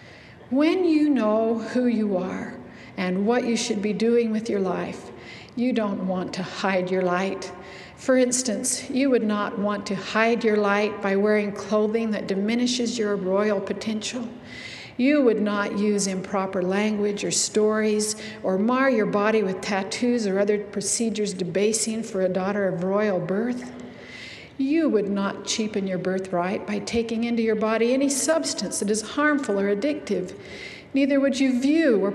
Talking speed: 160 wpm